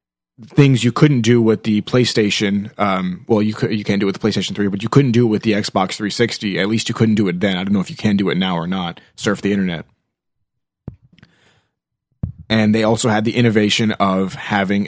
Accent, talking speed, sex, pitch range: American, 230 wpm, male, 100-115 Hz